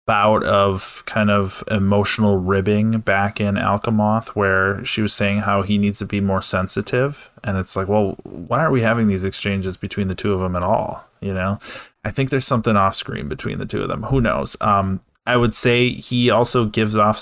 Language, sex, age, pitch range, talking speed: English, male, 20-39, 100-115 Hz, 210 wpm